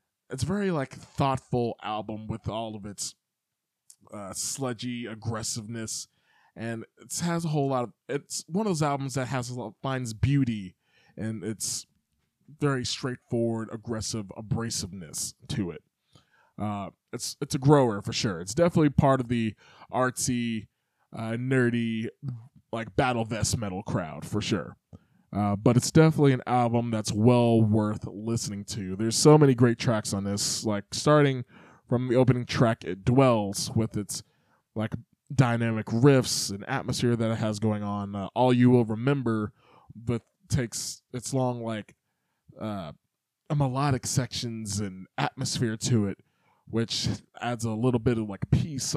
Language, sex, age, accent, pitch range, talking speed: English, male, 20-39, American, 110-135 Hz, 150 wpm